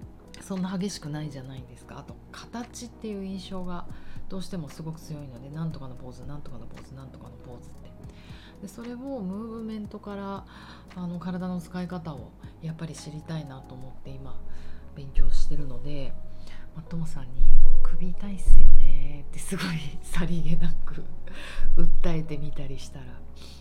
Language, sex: Japanese, female